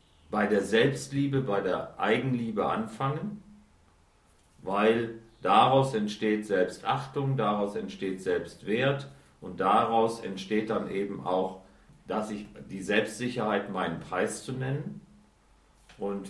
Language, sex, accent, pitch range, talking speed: German, male, German, 105-140 Hz, 105 wpm